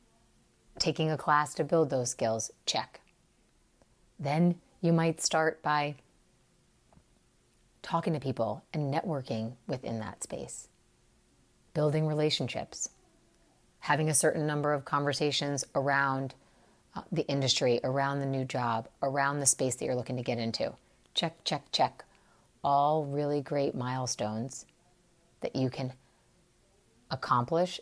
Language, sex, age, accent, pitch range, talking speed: English, female, 30-49, American, 125-150 Hz, 120 wpm